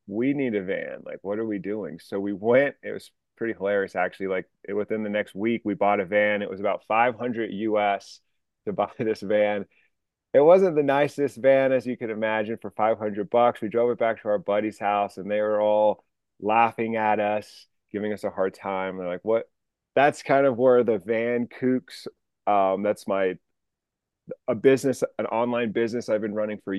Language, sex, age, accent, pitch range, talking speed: English, male, 30-49, American, 105-125 Hz, 200 wpm